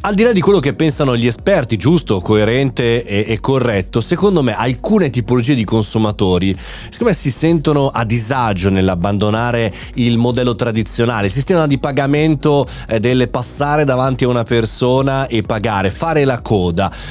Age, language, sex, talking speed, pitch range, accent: 30-49, Italian, male, 160 wpm, 105-135 Hz, native